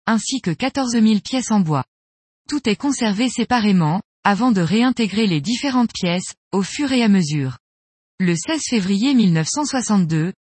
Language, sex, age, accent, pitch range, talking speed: French, female, 20-39, French, 180-245 Hz, 150 wpm